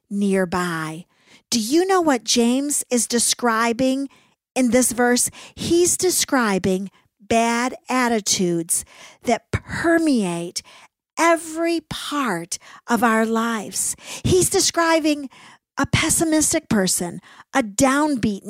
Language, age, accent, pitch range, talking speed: English, 50-69, American, 220-300 Hz, 95 wpm